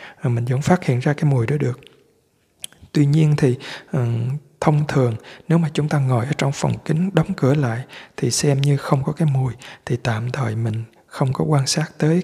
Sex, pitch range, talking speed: male, 125-155 Hz, 205 wpm